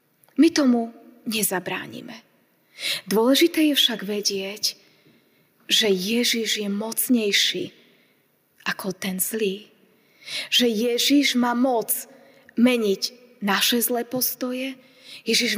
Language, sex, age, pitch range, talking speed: Slovak, female, 20-39, 210-255 Hz, 90 wpm